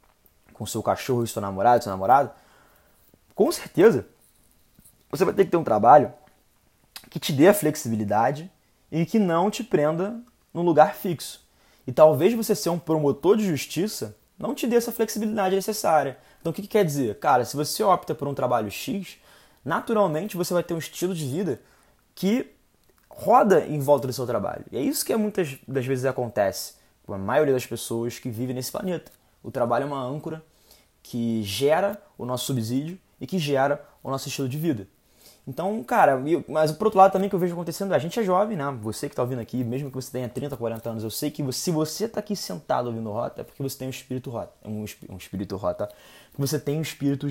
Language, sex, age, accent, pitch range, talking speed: Portuguese, male, 20-39, Brazilian, 125-180 Hz, 205 wpm